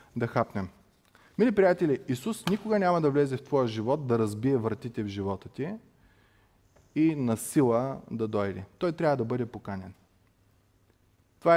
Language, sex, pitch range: Bulgarian, male, 110-150 Hz